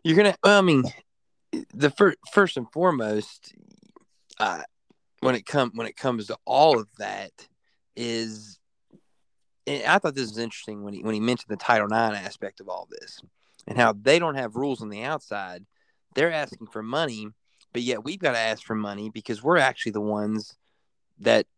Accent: American